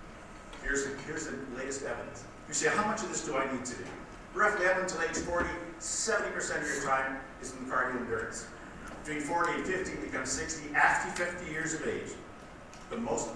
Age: 50-69